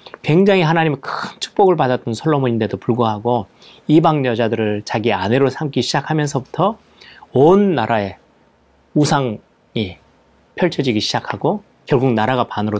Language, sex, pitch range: Korean, male, 110-145 Hz